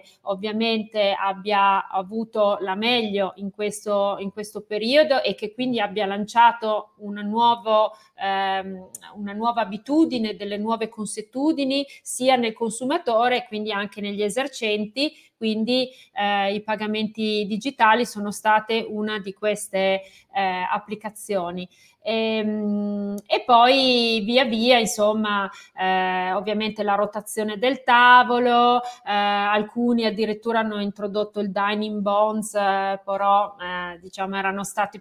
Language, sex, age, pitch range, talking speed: Italian, female, 30-49, 200-230 Hz, 115 wpm